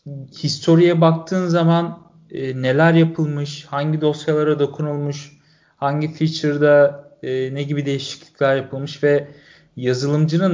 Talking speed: 100 wpm